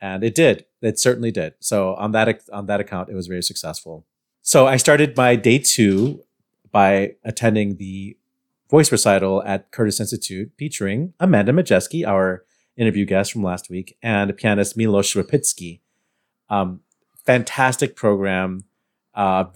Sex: male